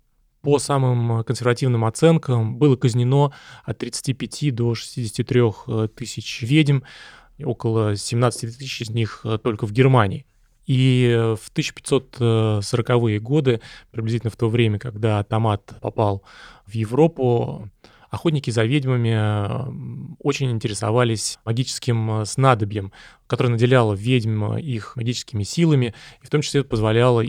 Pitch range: 110-130 Hz